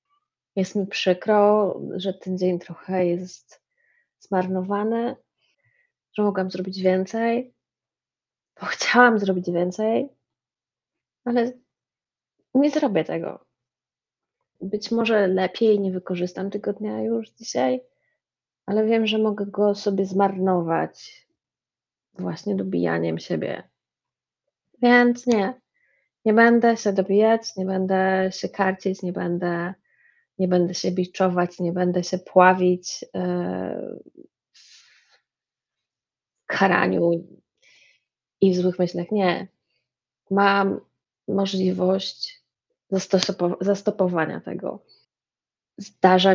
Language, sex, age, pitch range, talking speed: Polish, female, 30-49, 180-225 Hz, 90 wpm